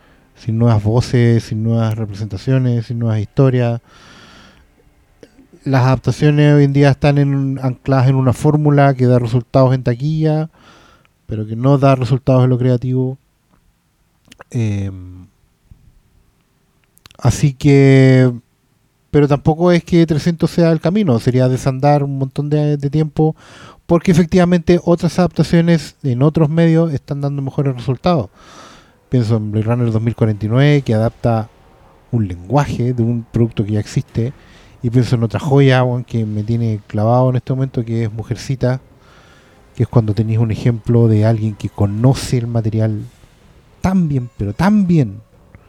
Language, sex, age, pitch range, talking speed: Spanish, male, 30-49, 115-145 Hz, 145 wpm